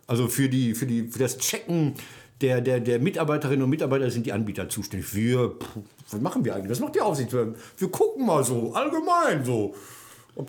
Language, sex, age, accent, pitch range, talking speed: German, male, 60-79, German, 120-155 Hz, 205 wpm